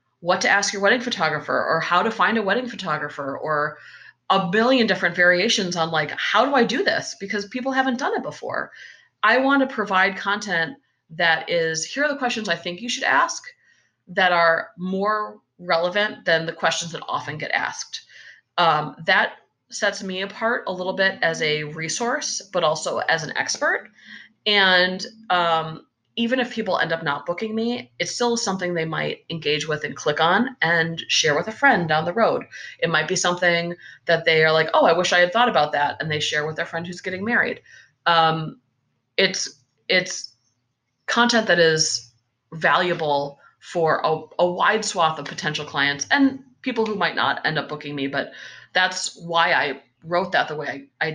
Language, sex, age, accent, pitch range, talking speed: English, female, 30-49, American, 155-210 Hz, 190 wpm